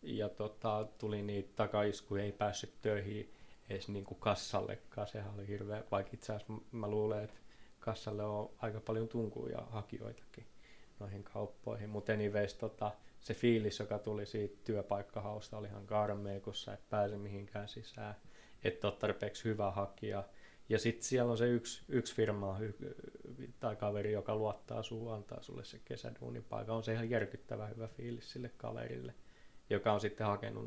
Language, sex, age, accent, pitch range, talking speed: Finnish, male, 20-39, native, 100-115 Hz, 145 wpm